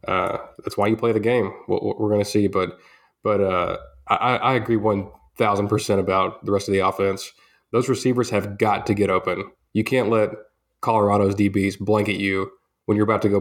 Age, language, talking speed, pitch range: 20-39, English, 195 wpm, 100-115 Hz